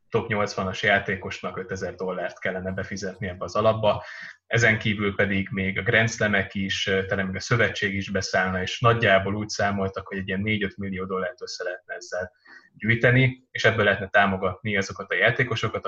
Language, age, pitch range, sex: Hungarian, 20-39, 95-110 Hz, male